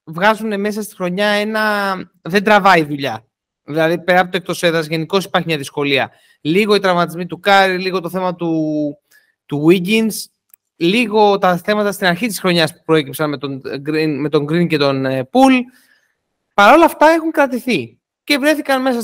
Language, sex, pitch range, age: Greek, male, 160-225 Hz, 30-49